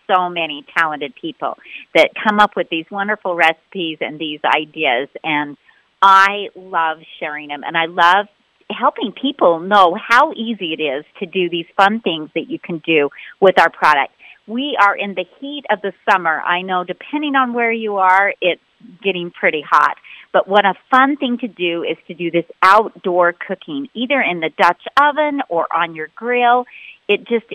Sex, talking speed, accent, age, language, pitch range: female, 185 wpm, American, 40-59, English, 170-235 Hz